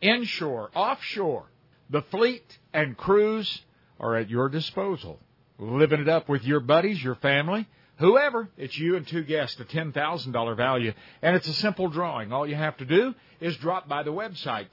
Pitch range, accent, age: 130-175 Hz, American, 50-69